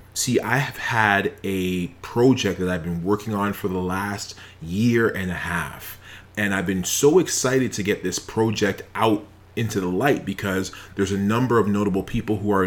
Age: 30-49